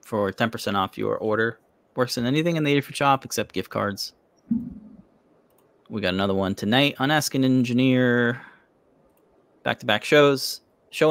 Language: English